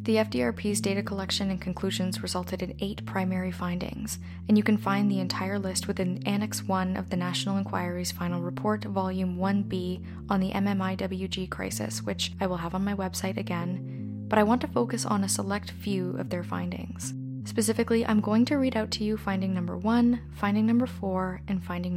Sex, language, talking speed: female, English, 190 wpm